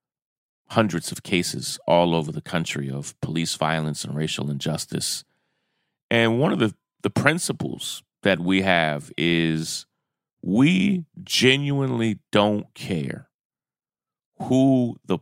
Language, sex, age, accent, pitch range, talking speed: English, male, 40-59, American, 85-105 Hz, 115 wpm